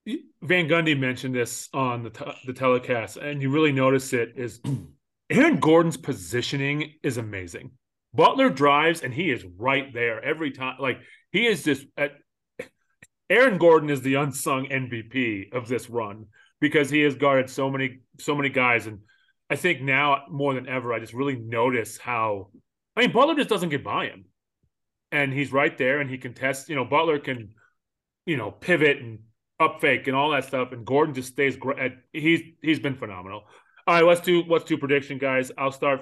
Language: English